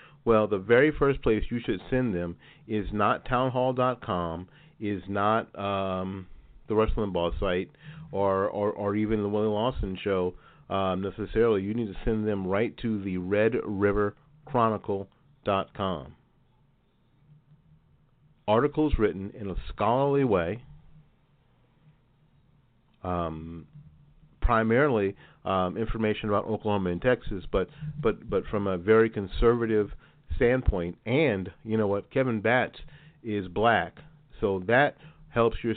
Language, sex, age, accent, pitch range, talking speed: English, male, 40-59, American, 95-130 Hz, 120 wpm